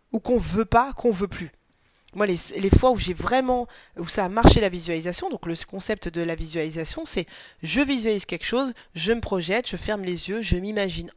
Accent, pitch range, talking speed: French, 175-235 Hz, 215 wpm